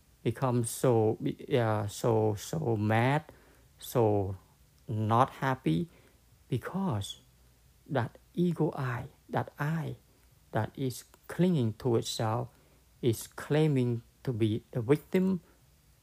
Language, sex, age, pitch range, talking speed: English, male, 60-79, 110-140 Hz, 95 wpm